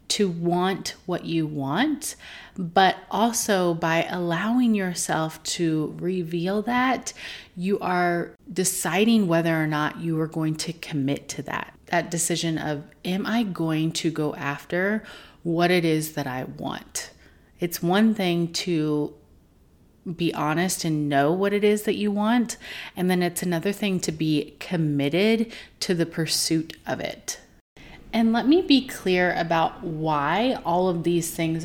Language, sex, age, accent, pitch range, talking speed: English, female, 30-49, American, 160-200 Hz, 150 wpm